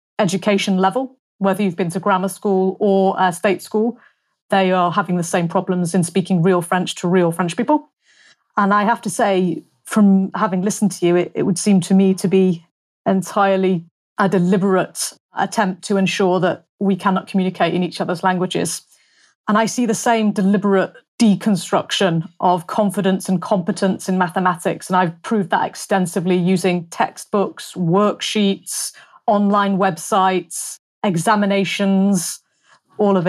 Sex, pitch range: female, 185-210 Hz